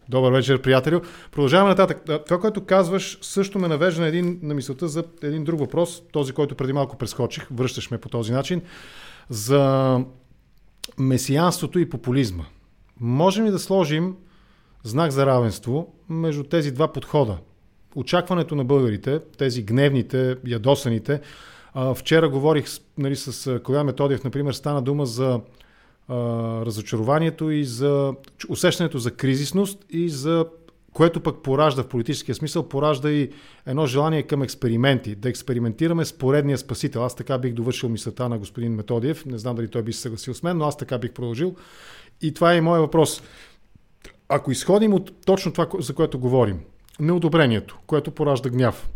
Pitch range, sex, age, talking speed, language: 125-160 Hz, male, 40-59, 150 wpm, English